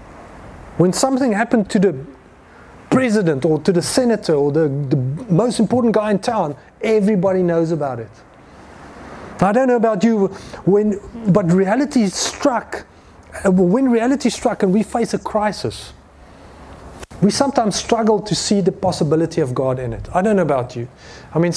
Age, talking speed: 30-49, 160 wpm